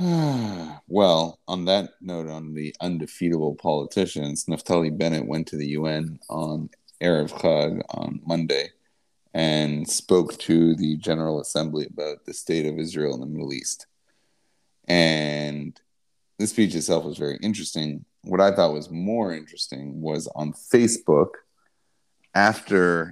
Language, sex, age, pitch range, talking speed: English, male, 30-49, 75-90 Hz, 130 wpm